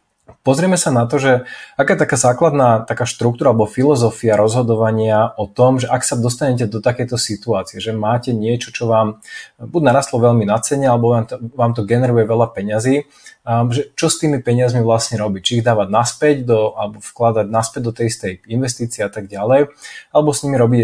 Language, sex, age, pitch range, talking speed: Slovak, male, 20-39, 110-130 Hz, 185 wpm